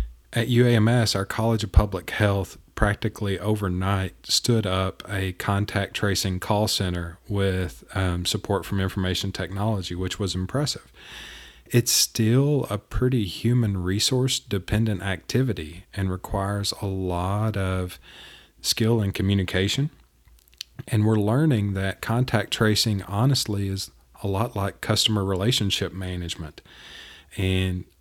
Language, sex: English, male